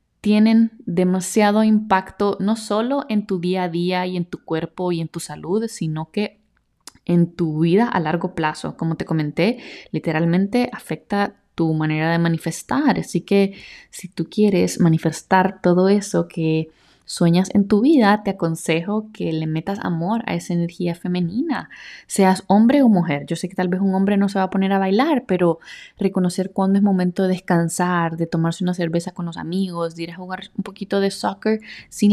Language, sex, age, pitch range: Spanish, female, 20-39, 170-210 Hz